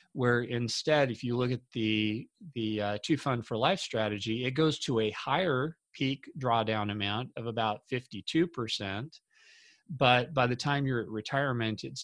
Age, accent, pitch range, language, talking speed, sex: 40-59, American, 110-130 Hz, English, 175 wpm, male